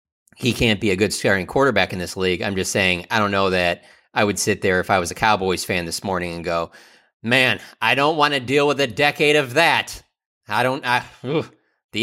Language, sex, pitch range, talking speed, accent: English, male, 85-120 Hz, 225 wpm, American